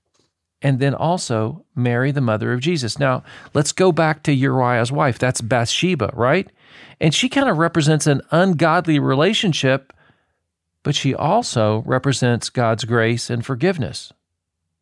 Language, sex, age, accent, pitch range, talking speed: English, male, 40-59, American, 110-145 Hz, 140 wpm